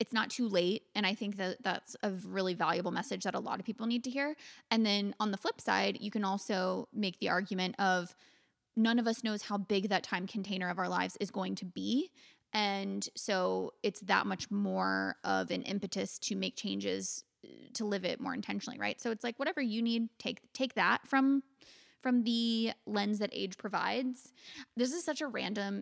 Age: 20-39